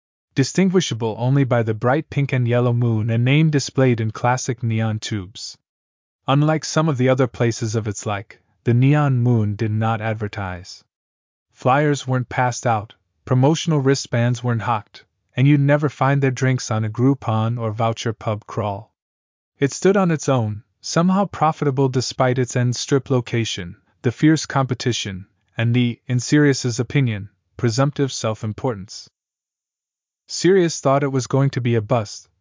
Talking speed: 155 wpm